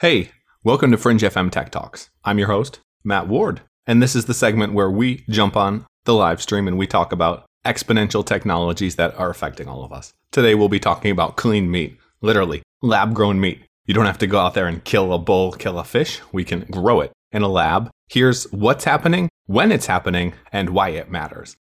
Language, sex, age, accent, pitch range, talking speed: English, male, 30-49, American, 100-125 Hz, 215 wpm